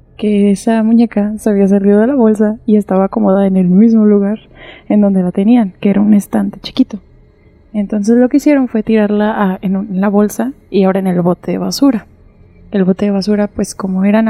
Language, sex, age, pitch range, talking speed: Spanish, female, 20-39, 195-230 Hz, 215 wpm